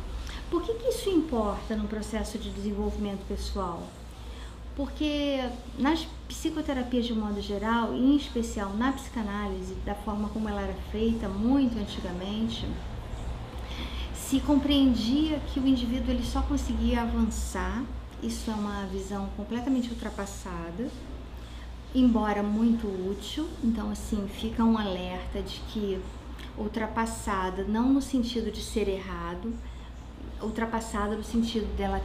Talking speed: 120 wpm